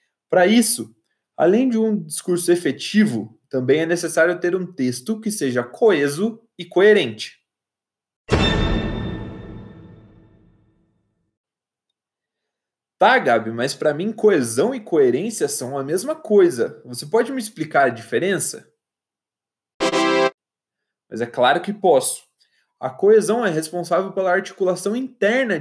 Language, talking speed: Portuguese, 110 wpm